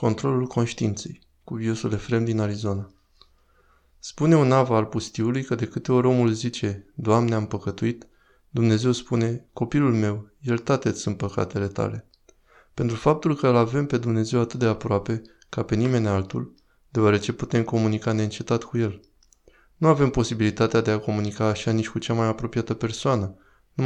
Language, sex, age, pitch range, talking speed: Romanian, male, 20-39, 105-120 Hz, 160 wpm